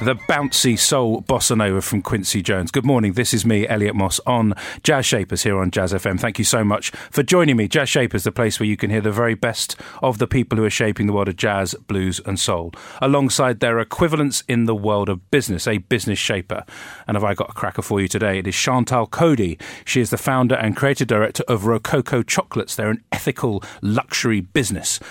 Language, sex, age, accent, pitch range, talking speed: English, male, 40-59, British, 95-125 Hz, 220 wpm